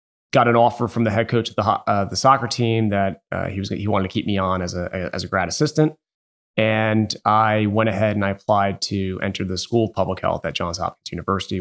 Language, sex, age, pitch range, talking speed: English, male, 30-49, 95-110 Hz, 245 wpm